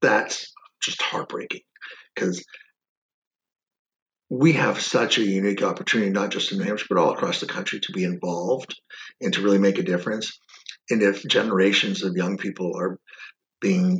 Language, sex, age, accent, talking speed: English, male, 50-69, American, 160 wpm